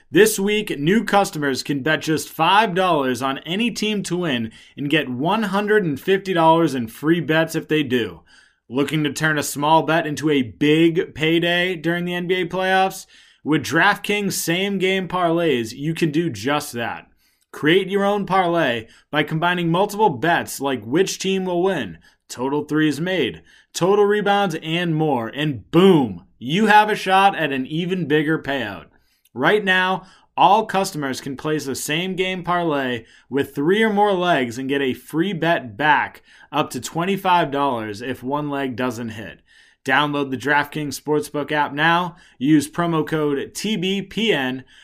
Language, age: English, 20-39